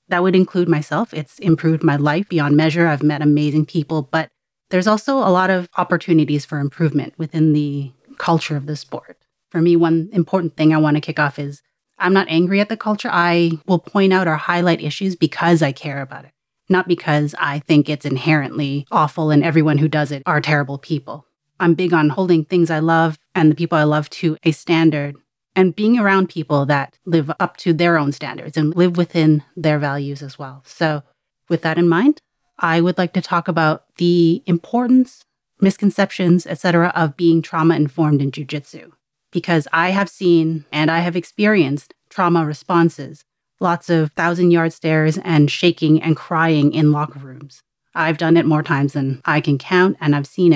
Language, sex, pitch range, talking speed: English, female, 150-175 Hz, 190 wpm